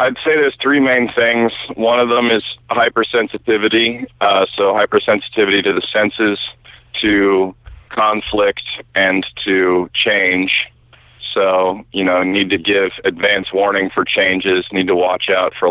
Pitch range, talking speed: 90-105 Hz, 140 wpm